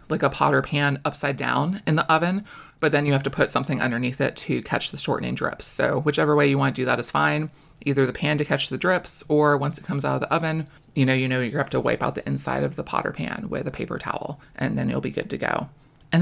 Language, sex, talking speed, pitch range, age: English, female, 280 wpm, 130-165 Hz, 20-39